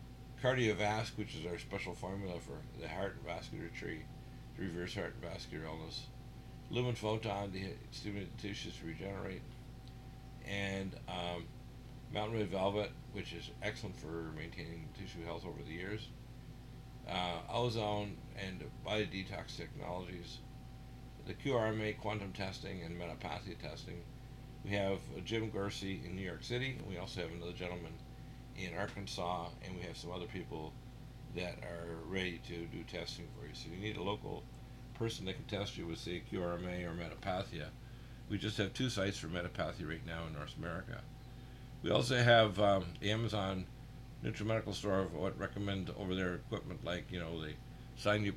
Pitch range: 90-125 Hz